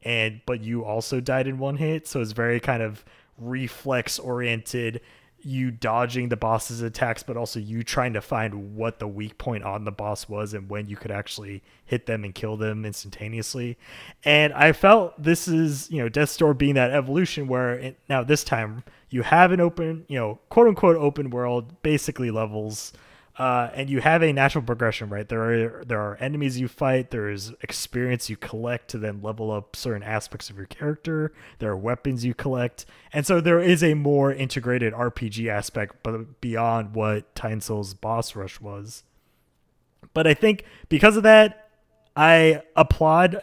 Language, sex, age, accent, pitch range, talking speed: English, male, 20-39, American, 110-135 Hz, 180 wpm